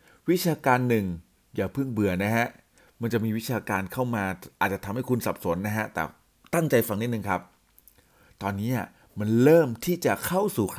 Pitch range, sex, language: 100-130 Hz, male, Thai